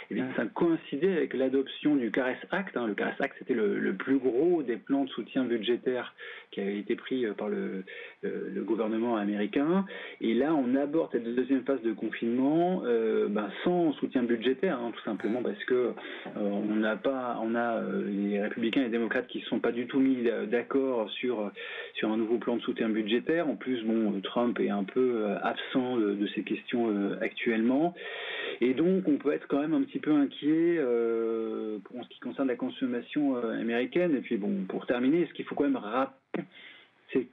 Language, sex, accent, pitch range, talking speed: French, male, French, 115-195 Hz, 205 wpm